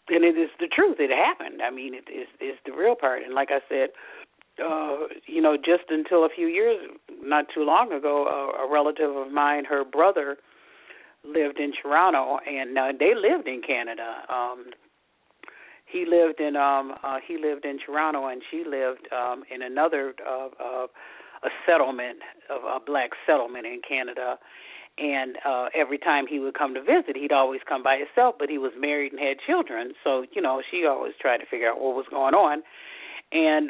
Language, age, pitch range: English, 40-59, 135-165 Hz